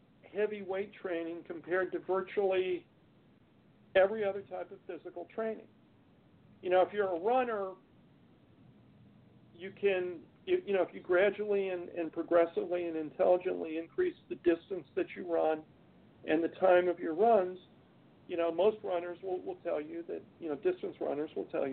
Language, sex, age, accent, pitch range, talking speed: English, male, 50-69, American, 170-210 Hz, 155 wpm